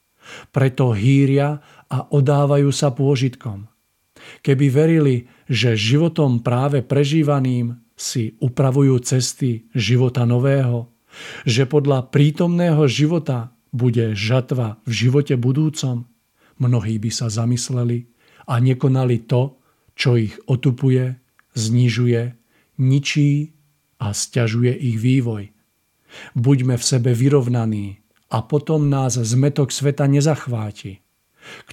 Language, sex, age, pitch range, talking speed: Czech, male, 50-69, 115-140 Hz, 100 wpm